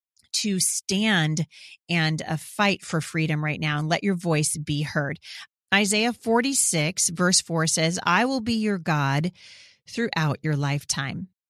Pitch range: 155-180 Hz